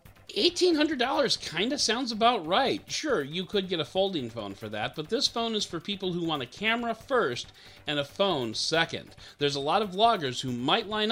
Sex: male